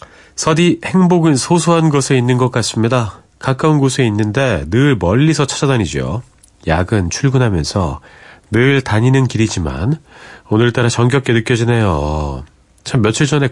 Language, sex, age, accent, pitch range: Korean, male, 40-59, native, 95-140 Hz